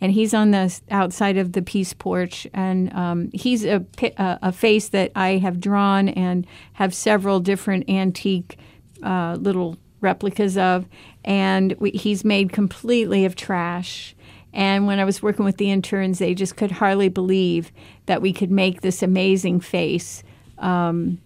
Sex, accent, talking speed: female, American, 160 wpm